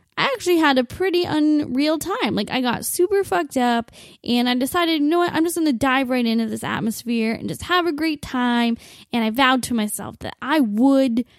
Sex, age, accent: female, 10-29, American